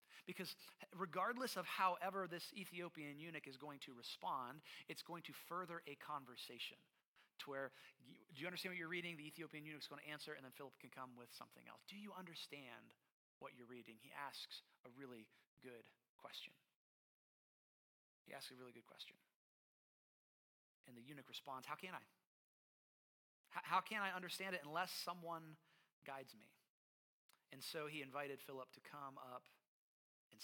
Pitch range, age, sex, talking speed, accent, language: 130-160 Hz, 30-49, male, 160 wpm, American, English